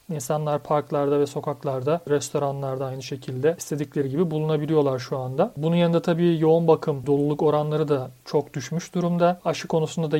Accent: native